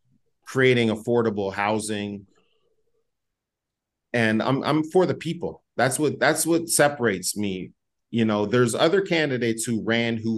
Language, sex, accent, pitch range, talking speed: English, male, American, 95-120 Hz, 135 wpm